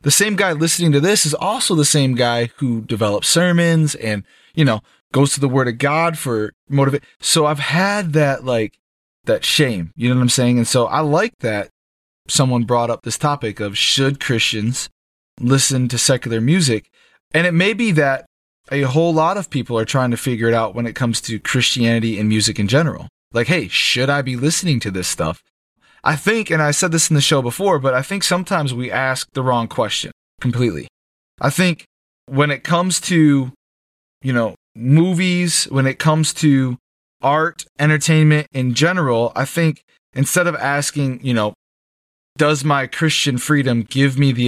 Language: English